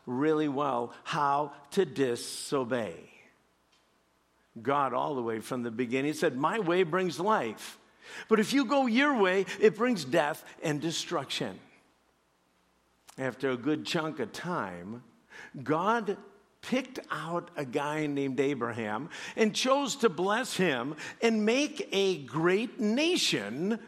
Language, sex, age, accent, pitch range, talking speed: English, male, 60-79, American, 125-195 Hz, 130 wpm